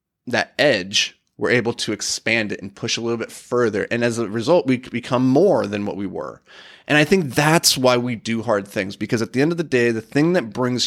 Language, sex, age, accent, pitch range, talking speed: English, male, 20-39, American, 115-150 Hz, 245 wpm